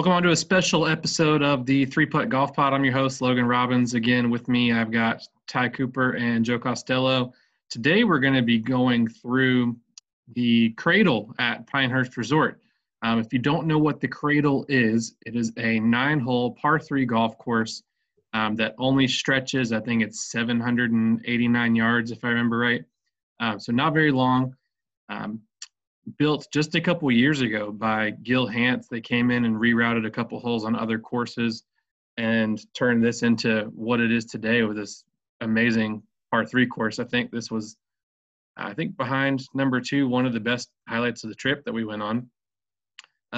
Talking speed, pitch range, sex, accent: 185 wpm, 115-130 Hz, male, American